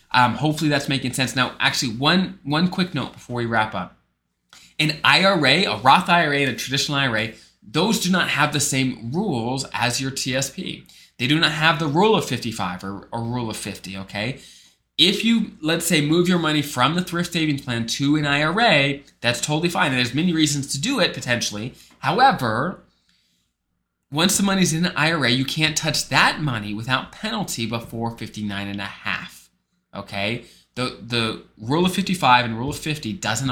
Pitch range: 115-155 Hz